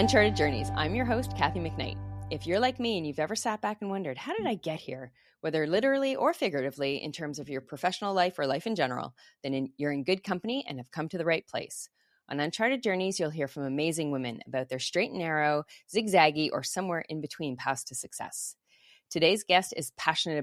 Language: English